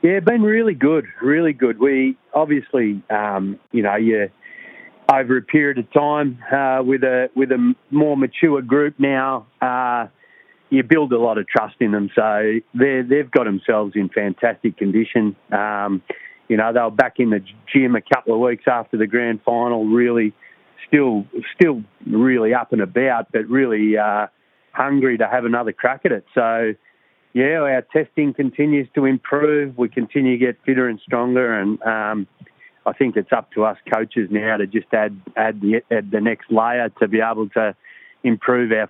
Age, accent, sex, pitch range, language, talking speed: 40-59, Australian, male, 110-130 Hz, English, 175 wpm